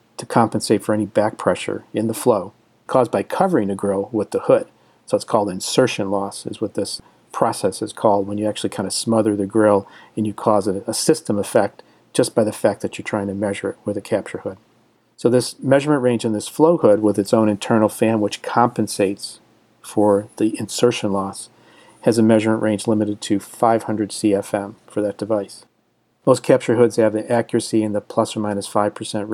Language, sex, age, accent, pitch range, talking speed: English, male, 50-69, American, 105-115 Hz, 200 wpm